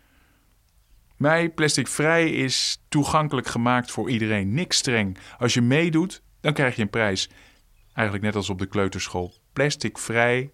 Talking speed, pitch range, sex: 150 wpm, 100-130 Hz, male